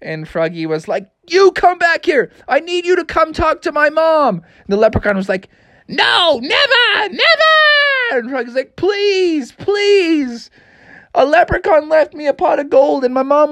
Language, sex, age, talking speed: English, male, 20-39, 180 wpm